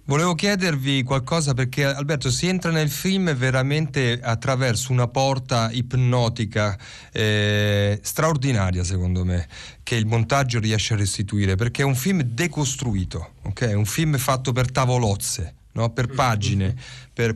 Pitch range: 110-150 Hz